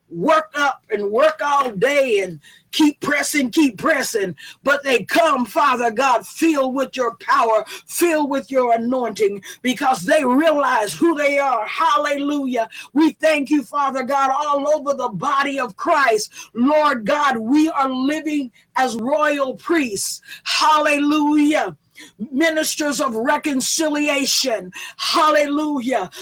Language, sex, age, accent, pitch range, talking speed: English, female, 50-69, American, 245-300 Hz, 125 wpm